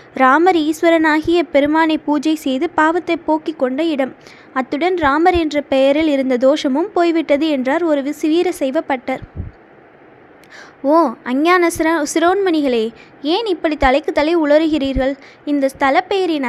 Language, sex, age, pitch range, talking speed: Tamil, female, 20-39, 275-335 Hz, 110 wpm